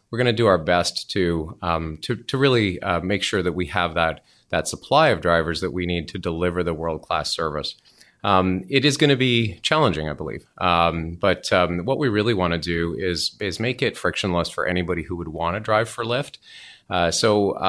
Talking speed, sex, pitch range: 220 wpm, male, 85-100 Hz